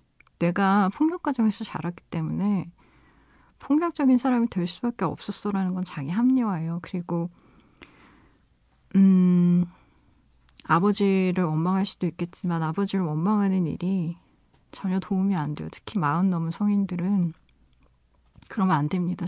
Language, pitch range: Korean, 170-200 Hz